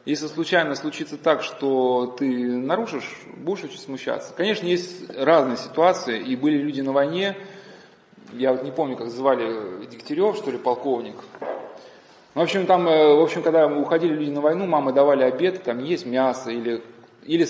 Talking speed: 165 wpm